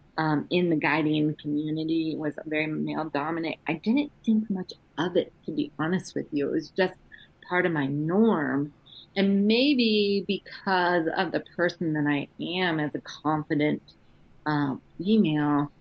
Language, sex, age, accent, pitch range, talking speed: English, female, 30-49, American, 150-180 Hz, 160 wpm